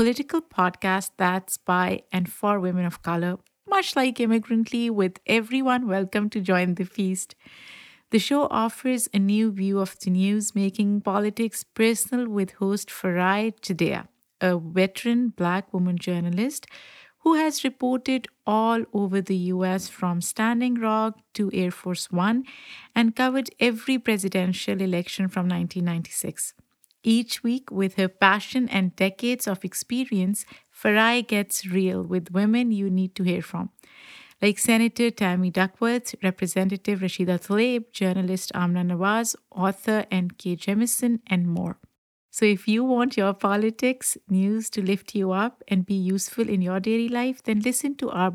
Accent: Indian